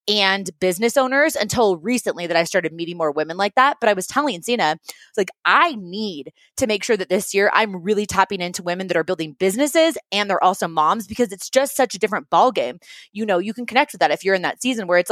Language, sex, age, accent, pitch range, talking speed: English, female, 20-39, American, 190-255 Hz, 240 wpm